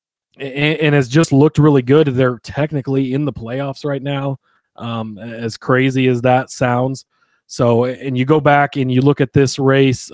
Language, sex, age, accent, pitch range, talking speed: English, male, 20-39, American, 125-145 Hz, 180 wpm